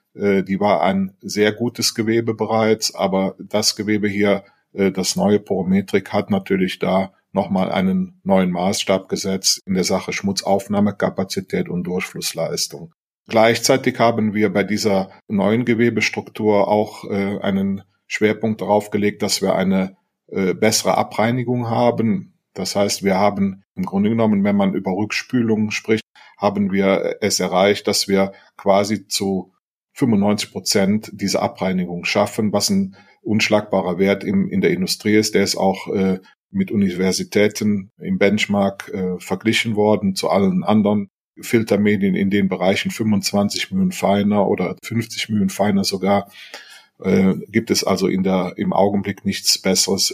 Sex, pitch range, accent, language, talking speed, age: male, 95-115 Hz, German, German, 135 wpm, 40-59